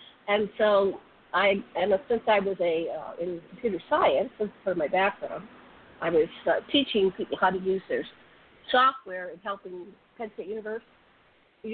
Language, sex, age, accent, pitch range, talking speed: English, female, 50-69, American, 180-240 Hz, 165 wpm